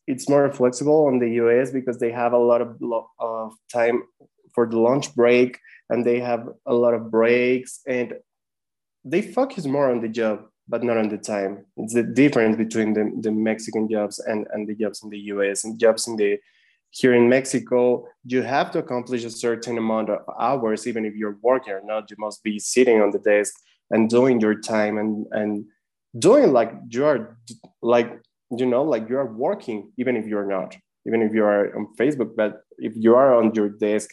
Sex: male